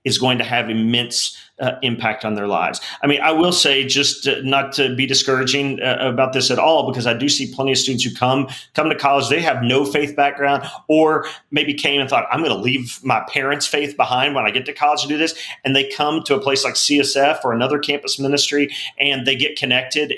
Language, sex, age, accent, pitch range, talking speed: English, male, 40-59, American, 130-155 Hz, 235 wpm